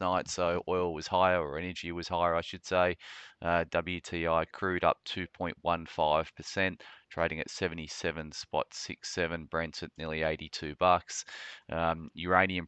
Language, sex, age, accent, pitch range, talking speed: English, male, 20-39, Australian, 75-85 Hz, 135 wpm